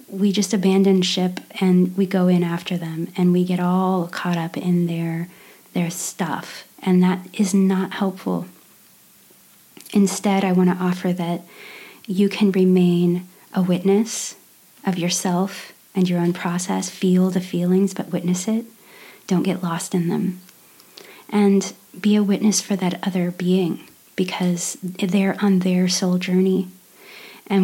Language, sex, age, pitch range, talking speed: English, female, 30-49, 175-195 Hz, 150 wpm